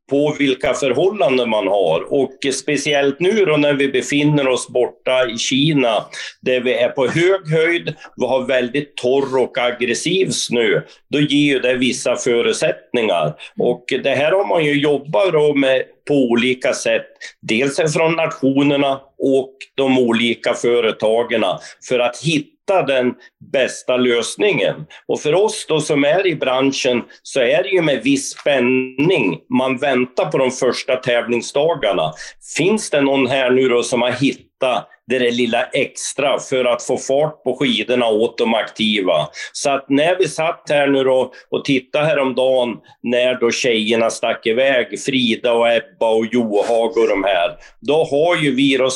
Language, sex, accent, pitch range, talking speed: Swedish, male, native, 125-145 Hz, 160 wpm